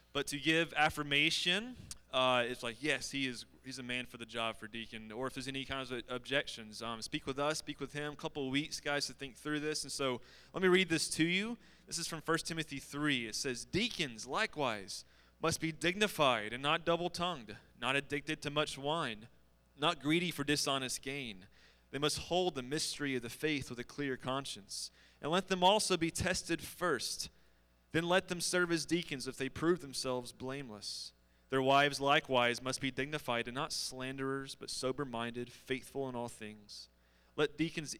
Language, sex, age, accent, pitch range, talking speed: English, male, 30-49, American, 120-150 Hz, 190 wpm